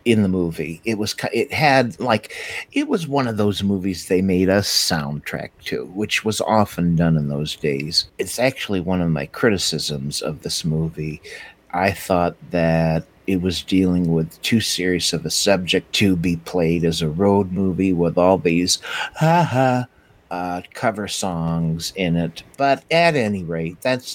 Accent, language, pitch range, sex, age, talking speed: American, English, 85-110 Hz, male, 60-79, 170 wpm